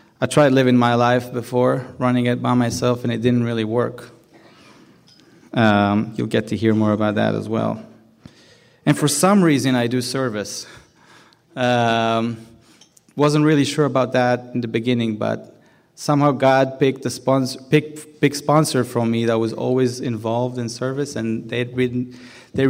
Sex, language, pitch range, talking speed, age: male, English, 115-145 Hz, 160 wpm, 30-49